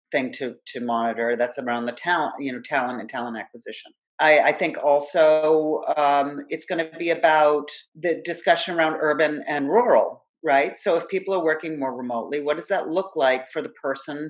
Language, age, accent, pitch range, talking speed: English, 40-59, American, 130-155 Hz, 195 wpm